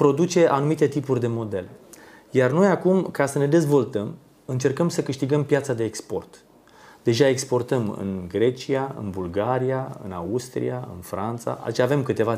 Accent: native